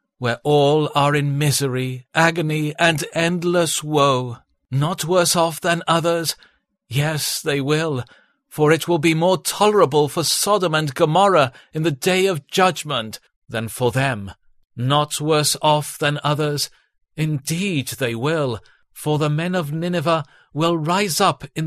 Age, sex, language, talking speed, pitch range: 50-69, male, English, 145 wpm, 125-160 Hz